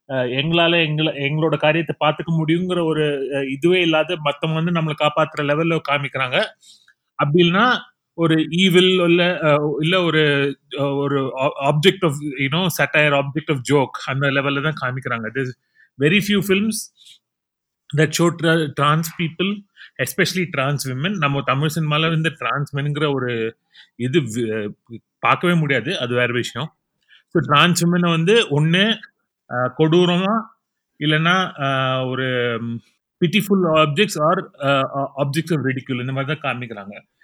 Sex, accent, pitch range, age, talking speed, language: male, native, 140-175 Hz, 30-49, 110 wpm, Tamil